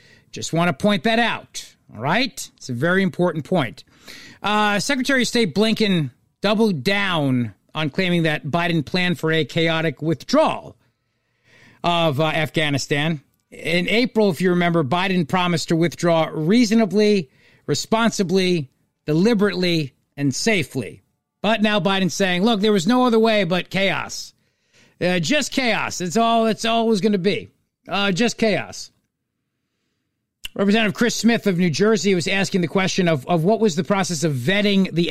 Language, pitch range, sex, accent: English, 155-205 Hz, male, American